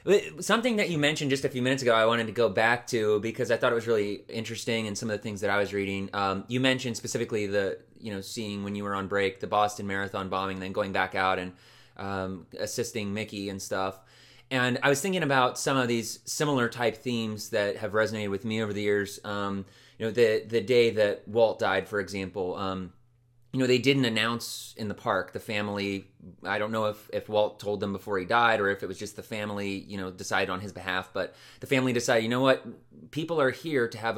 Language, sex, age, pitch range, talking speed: English, male, 30-49, 100-120 Hz, 240 wpm